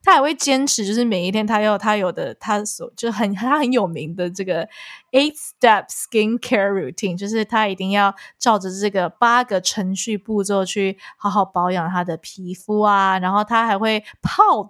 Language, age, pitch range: Chinese, 20-39, 185-235 Hz